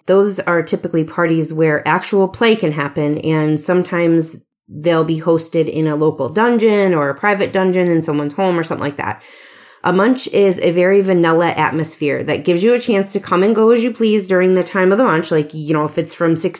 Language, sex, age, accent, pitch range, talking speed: English, female, 30-49, American, 155-185 Hz, 220 wpm